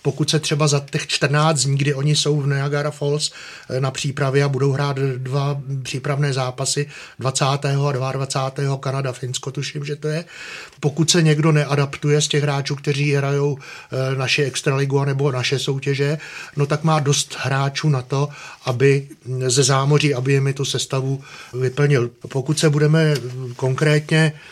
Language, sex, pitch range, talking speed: Czech, male, 135-150 Hz, 150 wpm